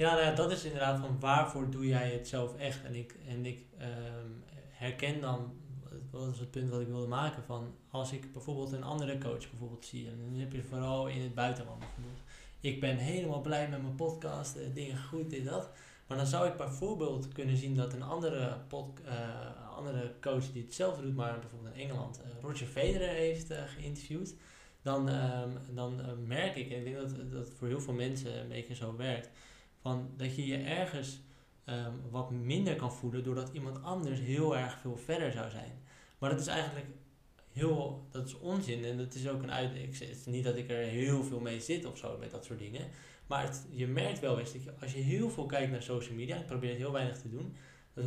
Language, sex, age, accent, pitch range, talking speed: Dutch, male, 20-39, Dutch, 120-140 Hz, 220 wpm